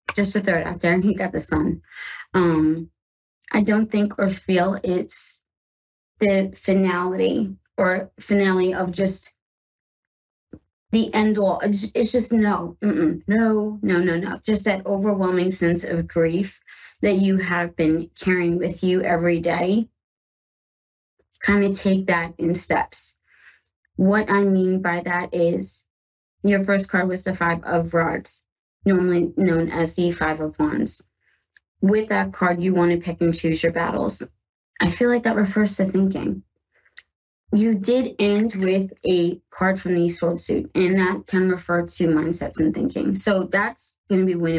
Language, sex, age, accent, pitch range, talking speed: English, female, 20-39, American, 170-200 Hz, 160 wpm